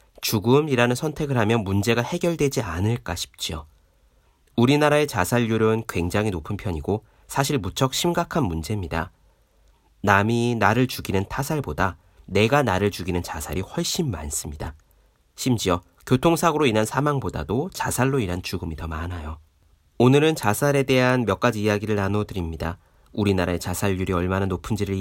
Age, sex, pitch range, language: 40-59, male, 85-125 Hz, Korean